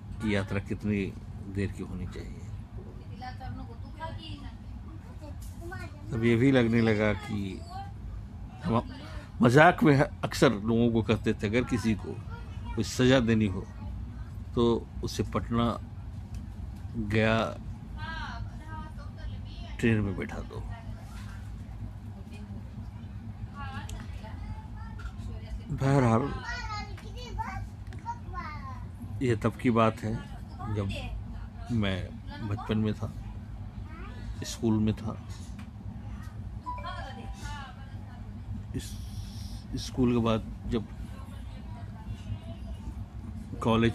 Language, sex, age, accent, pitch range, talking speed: Hindi, male, 60-79, native, 100-110 Hz, 75 wpm